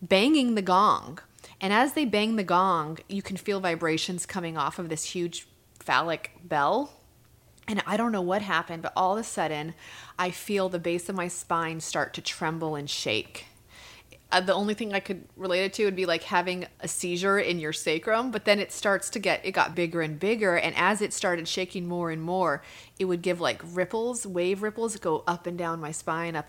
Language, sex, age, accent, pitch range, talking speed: English, female, 30-49, American, 165-195 Hz, 215 wpm